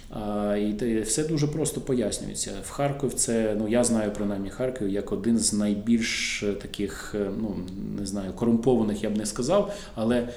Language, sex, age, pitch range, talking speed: Ukrainian, male, 20-39, 100-120 Hz, 160 wpm